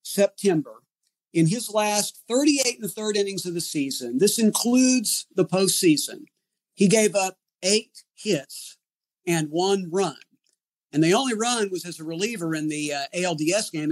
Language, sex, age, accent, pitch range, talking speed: English, male, 50-69, American, 160-210 Hz, 160 wpm